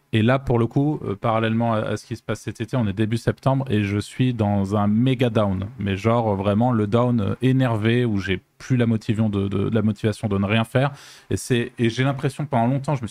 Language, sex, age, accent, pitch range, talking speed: French, male, 20-39, French, 105-125 Hz, 260 wpm